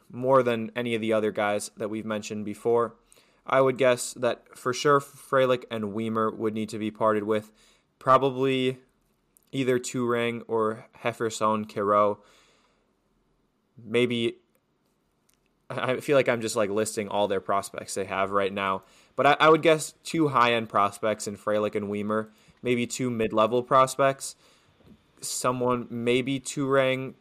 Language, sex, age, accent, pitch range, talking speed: English, male, 20-39, American, 105-125 Hz, 150 wpm